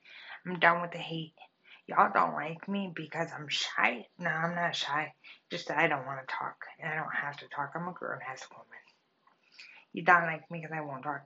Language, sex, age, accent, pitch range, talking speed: English, female, 20-39, American, 155-185 Hz, 220 wpm